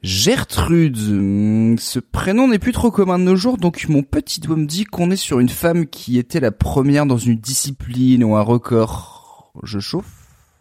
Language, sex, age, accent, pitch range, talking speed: French, male, 30-49, French, 105-155 Hz, 185 wpm